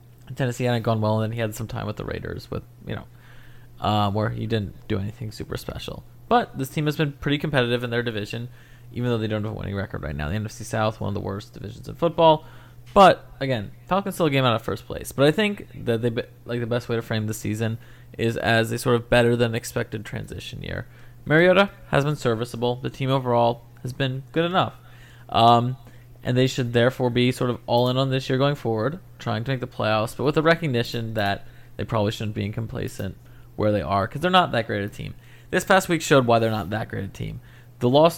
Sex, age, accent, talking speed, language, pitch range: male, 20-39, American, 235 wpm, English, 110-130 Hz